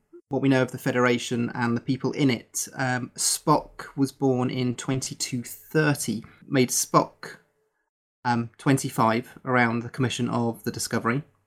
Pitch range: 115-135 Hz